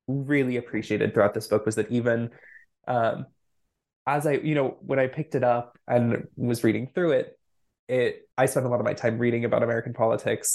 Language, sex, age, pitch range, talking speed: English, male, 20-39, 115-140 Hz, 200 wpm